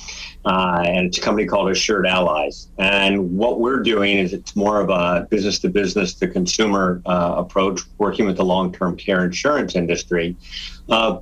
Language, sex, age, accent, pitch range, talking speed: English, male, 50-69, American, 90-115 Hz, 150 wpm